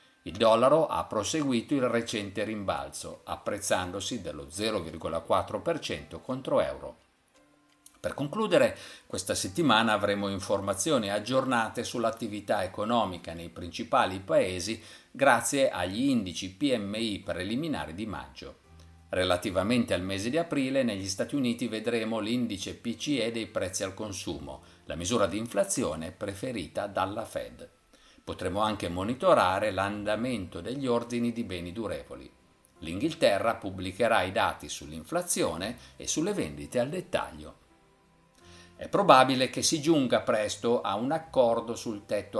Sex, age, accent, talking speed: male, 50-69, native, 115 wpm